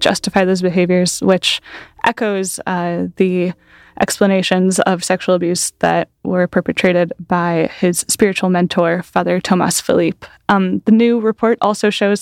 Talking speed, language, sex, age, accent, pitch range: 135 wpm, English, female, 10-29, American, 180-200 Hz